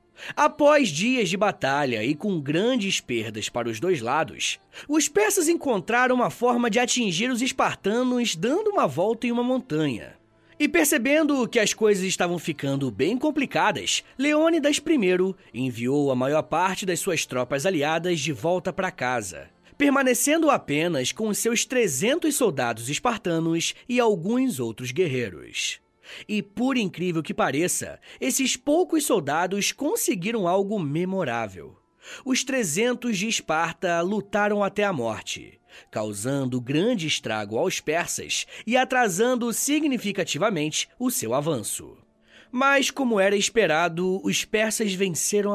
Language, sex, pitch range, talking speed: Portuguese, male, 160-255 Hz, 130 wpm